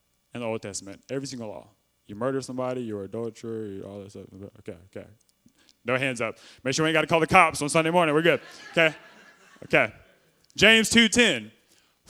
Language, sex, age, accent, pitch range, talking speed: English, male, 20-39, American, 125-215 Hz, 190 wpm